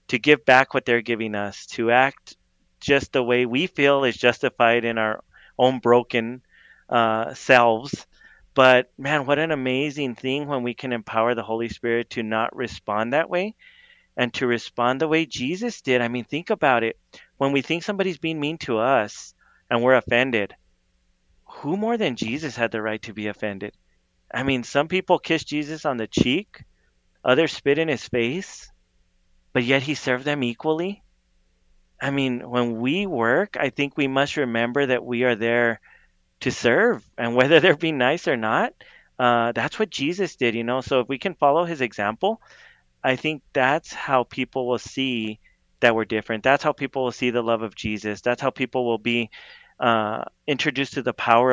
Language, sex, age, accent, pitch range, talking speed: English, male, 30-49, American, 115-145 Hz, 185 wpm